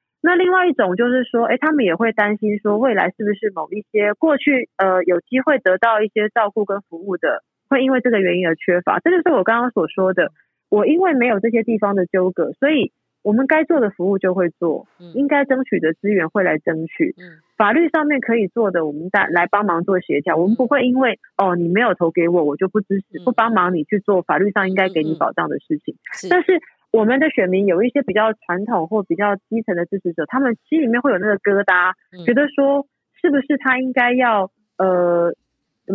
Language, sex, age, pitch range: Chinese, female, 30-49, 190-265 Hz